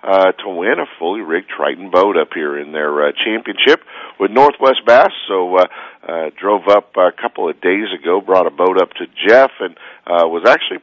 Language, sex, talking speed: English, male, 205 wpm